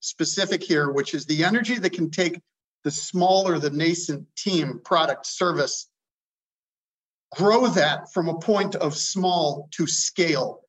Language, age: English, 50-69